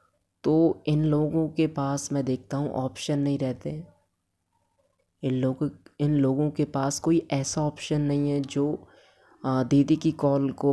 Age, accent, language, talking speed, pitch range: 20-39, Indian, English, 155 wpm, 130-150 Hz